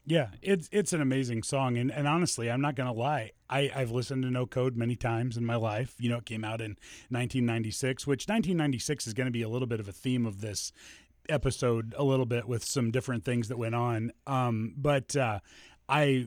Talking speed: 230 wpm